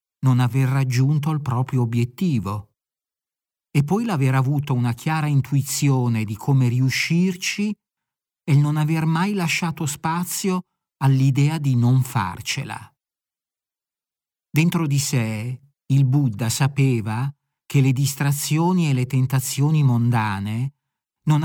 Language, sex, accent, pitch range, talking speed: Italian, male, native, 125-155 Hz, 110 wpm